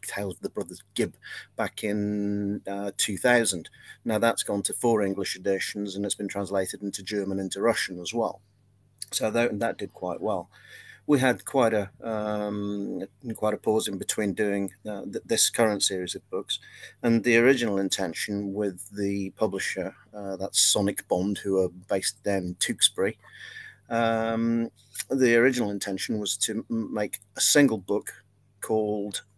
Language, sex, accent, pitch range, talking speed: English, male, British, 100-115 Hz, 160 wpm